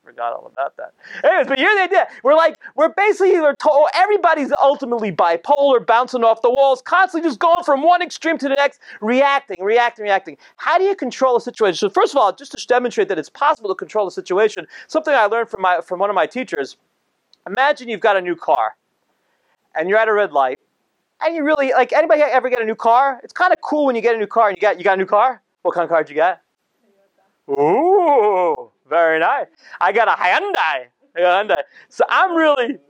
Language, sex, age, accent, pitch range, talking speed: English, male, 30-49, American, 185-290 Hz, 230 wpm